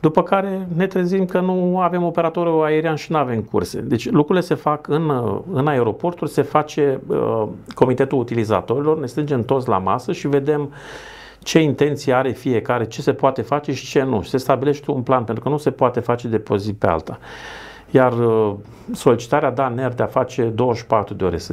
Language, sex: Romanian, male